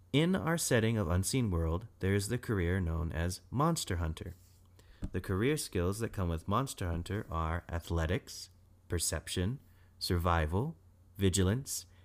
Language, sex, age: English, male, 30-49